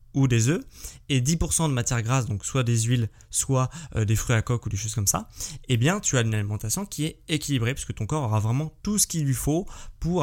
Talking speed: 260 wpm